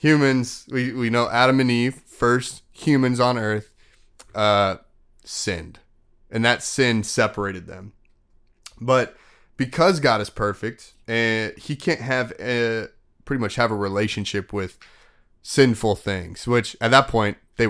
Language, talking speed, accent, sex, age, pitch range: English, 140 wpm, American, male, 20-39, 105-125 Hz